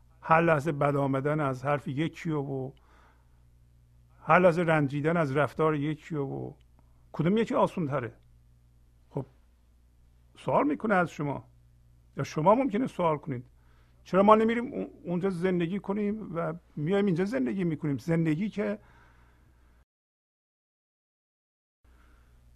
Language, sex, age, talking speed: Persian, male, 50-69, 110 wpm